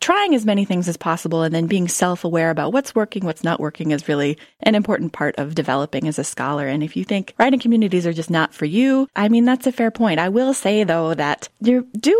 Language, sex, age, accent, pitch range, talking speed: English, female, 20-39, American, 160-210 Hz, 245 wpm